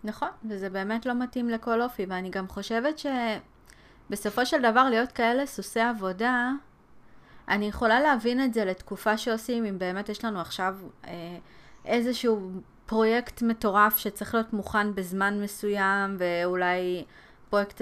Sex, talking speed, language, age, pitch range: female, 130 wpm, Hebrew, 30-49, 190-235 Hz